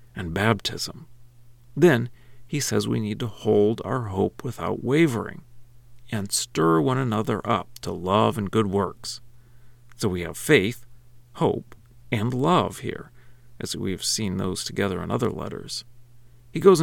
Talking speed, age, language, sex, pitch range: 150 wpm, 40-59, English, male, 105-125 Hz